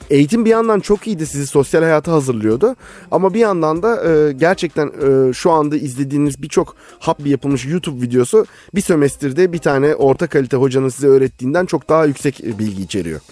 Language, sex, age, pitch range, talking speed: Turkish, male, 30-49, 115-150 Hz, 175 wpm